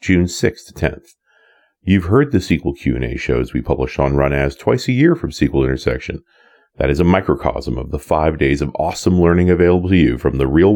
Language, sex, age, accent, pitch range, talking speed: English, male, 40-59, American, 75-105 Hz, 220 wpm